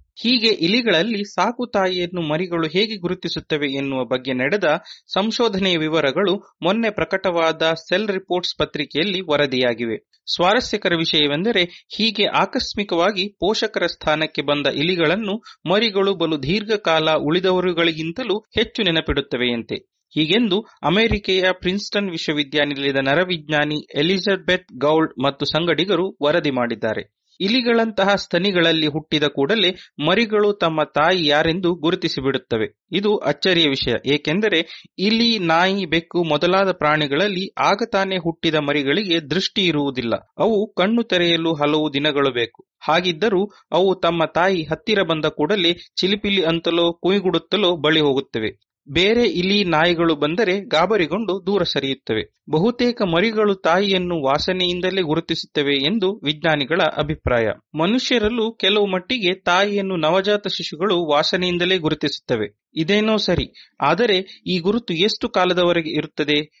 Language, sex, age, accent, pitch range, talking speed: English, male, 30-49, Indian, 155-195 Hz, 95 wpm